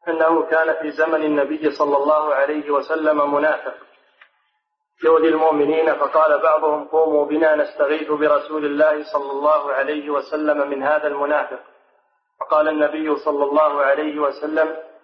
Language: Arabic